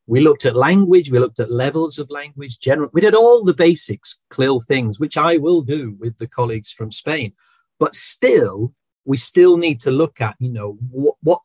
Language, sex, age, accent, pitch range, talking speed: Italian, male, 40-59, British, 120-165 Hz, 205 wpm